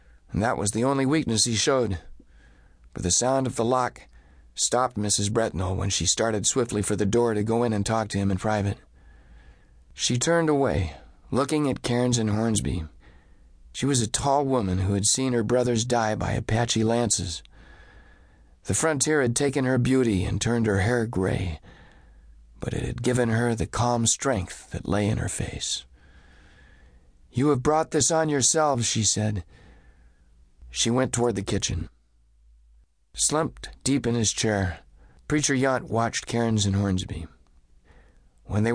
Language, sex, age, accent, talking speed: English, male, 50-69, American, 160 wpm